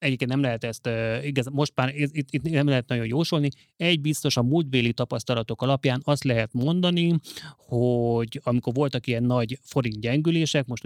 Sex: male